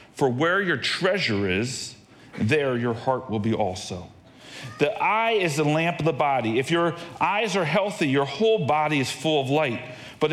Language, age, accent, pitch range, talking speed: English, 40-59, American, 130-195 Hz, 185 wpm